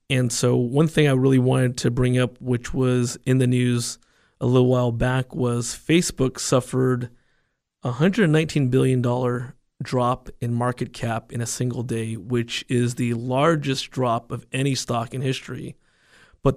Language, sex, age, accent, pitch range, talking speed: English, male, 30-49, American, 125-140 Hz, 160 wpm